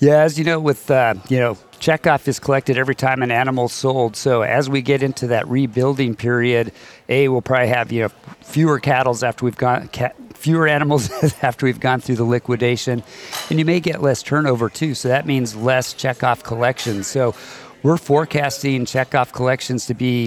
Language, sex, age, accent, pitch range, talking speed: English, male, 50-69, American, 120-140 Hz, 190 wpm